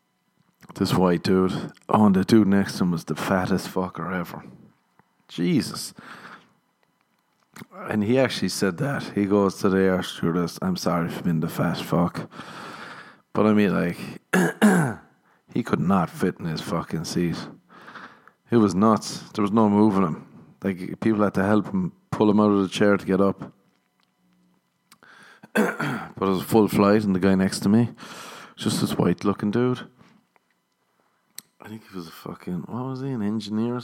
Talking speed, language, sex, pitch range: 170 wpm, English, male, 95-110 Hz